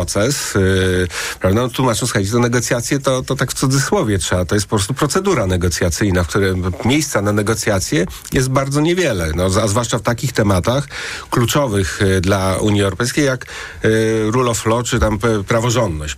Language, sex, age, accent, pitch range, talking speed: Polish, male, 40-59, native, 100-125 Hz, 175 wpm